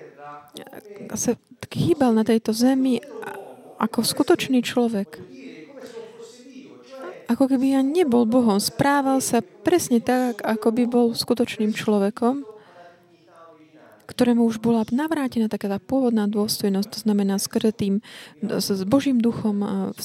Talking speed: 110 wpm